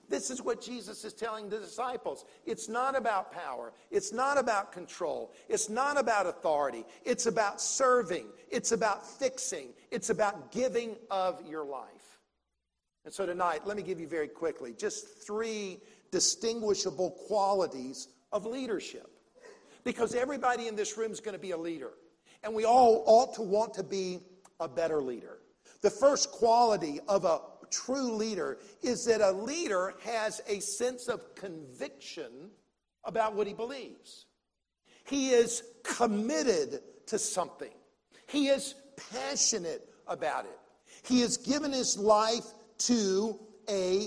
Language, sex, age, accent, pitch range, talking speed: English, male, 50-69, American, 205-265 Hz, 145 wpm